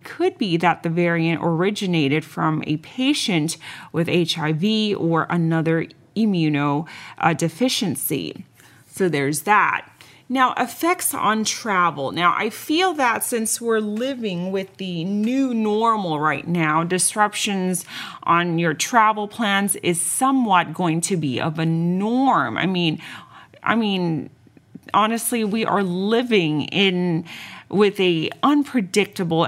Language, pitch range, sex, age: Thai, 165-215 Hz, female, 30-49